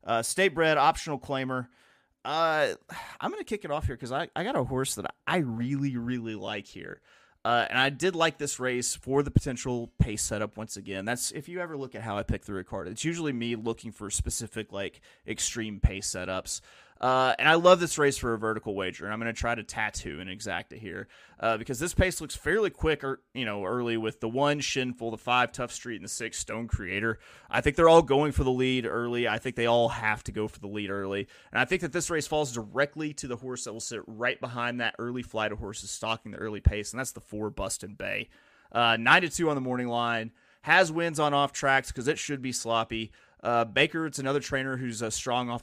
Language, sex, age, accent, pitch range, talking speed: English, male, 30-49, American, 110-140 Hz, 240 wpm